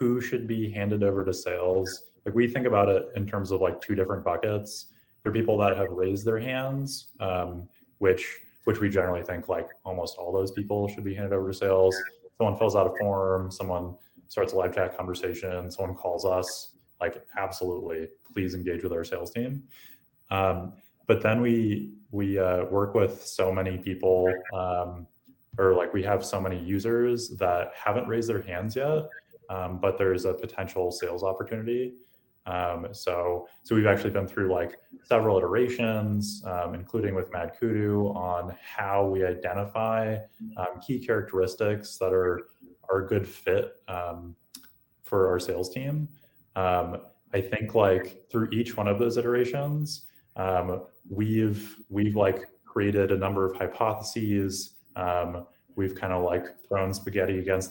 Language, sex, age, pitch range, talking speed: English, male, 20-39, 90-110 Hz, 165 wpm